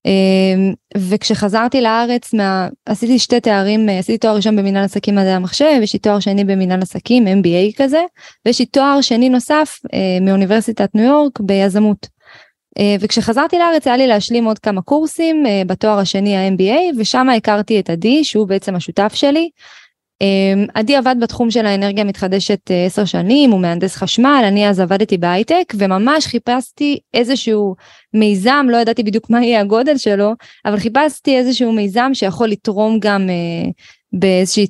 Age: 20-39